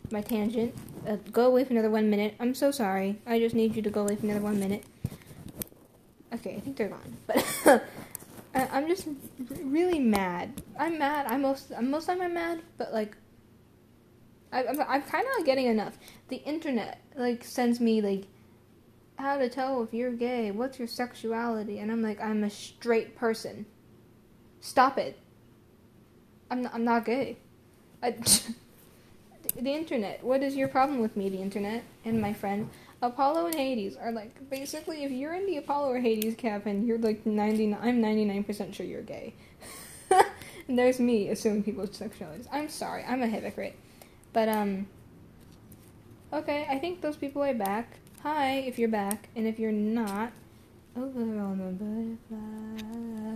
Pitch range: 210-260 Hz